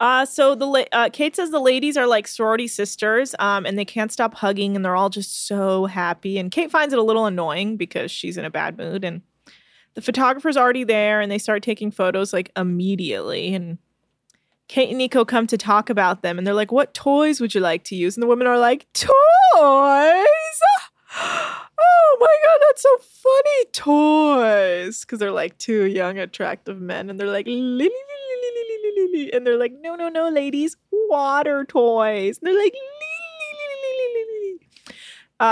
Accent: American